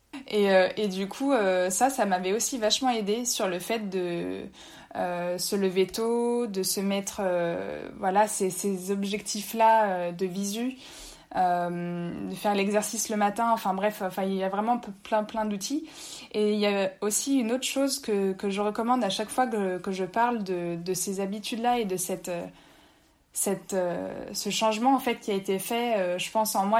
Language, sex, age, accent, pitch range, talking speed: French, female, 20-39, French, 195-235 Hz, 195 wpm